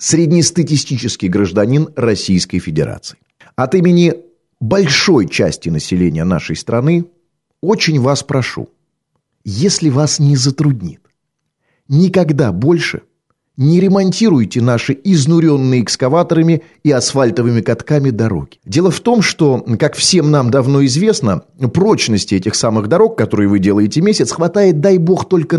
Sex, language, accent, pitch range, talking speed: male, Russian, native, 130-180 Hz, 115 wpm